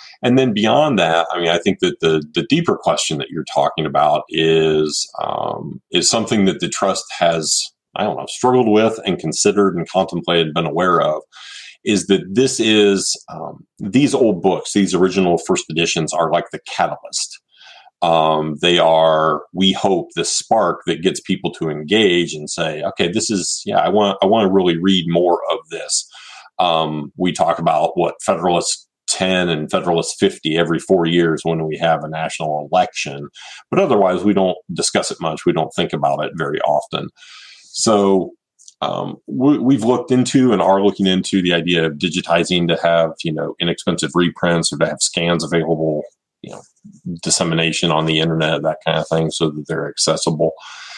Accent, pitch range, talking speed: American, 80-95 Hz, 180 wpm